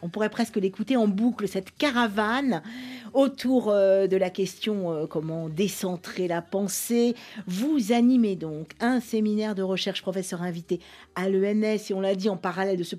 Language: French